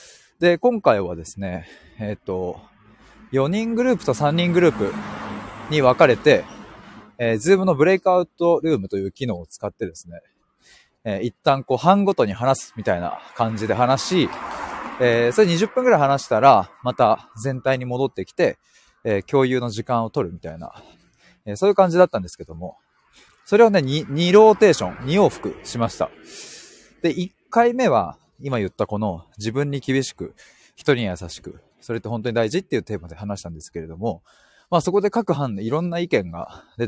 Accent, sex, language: native, male, Japanese